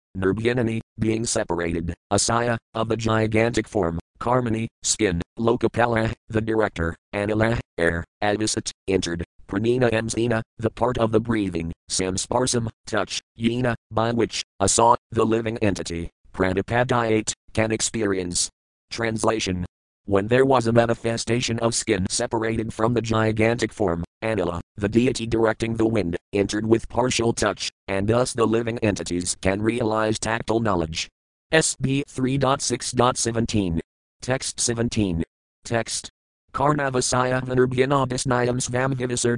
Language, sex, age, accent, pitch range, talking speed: English, male, 40-59, American, 95-120 Hz, 120 wpm